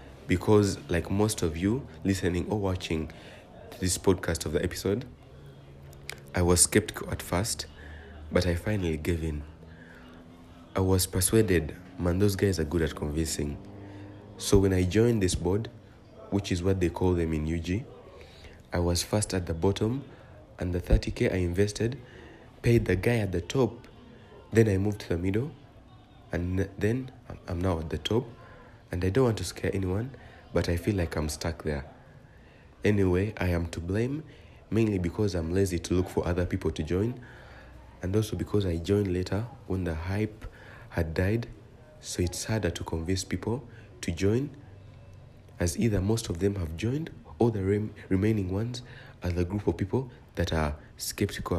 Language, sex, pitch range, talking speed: English, male, 85-110 Hz, 170 wpm